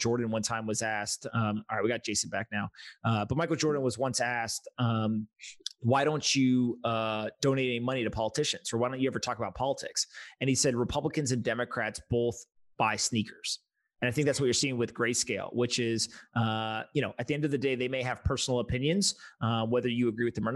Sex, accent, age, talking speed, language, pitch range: male, American, 30-49, 230 wpm, English, 110-130 Hz